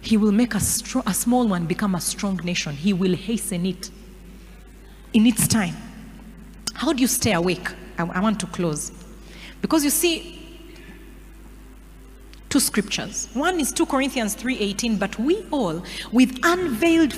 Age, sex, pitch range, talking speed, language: 30-49, female, 190-290 Hz, 150 wpm, English